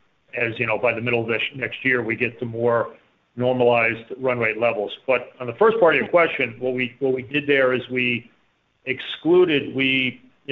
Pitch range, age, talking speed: 120-145 Hz, 40-59, 205 wpm